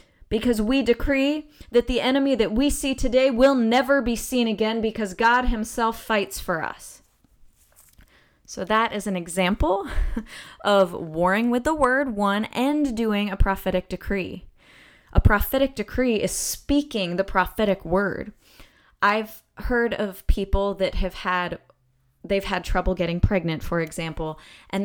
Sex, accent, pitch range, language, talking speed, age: female, American, 185-230 Hz, English, 145 wpm, 20-39